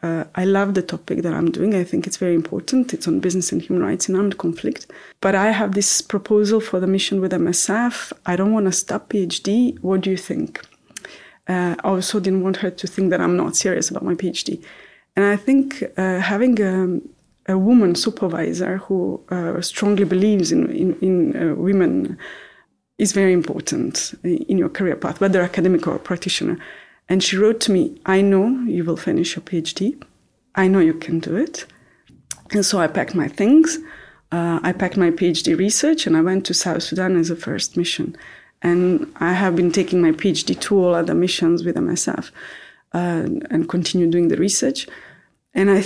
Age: 30-49